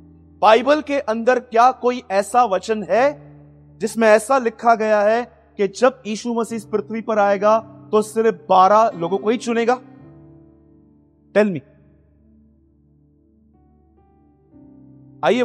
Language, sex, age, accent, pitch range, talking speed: Hindi, male, 30-49, native, 190-240 Hz, 110 wpm